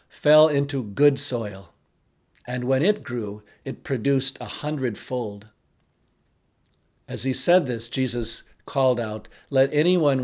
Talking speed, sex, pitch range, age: 125 wpm, male, 110-130 Hz, 50-69